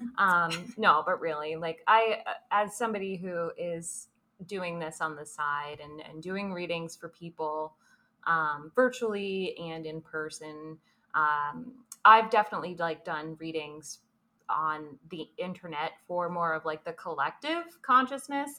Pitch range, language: 155-190 Hz, English